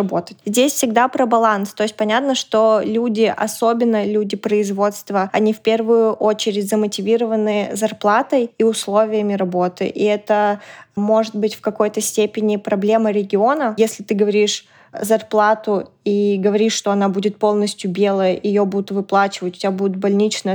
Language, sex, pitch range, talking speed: Russian, female, 205-225 Hz, 140 wpm